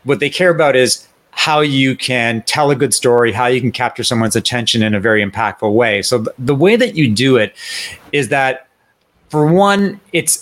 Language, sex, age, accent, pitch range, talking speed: English, male, 40-59, American, 115-155 Hz, 200 wpm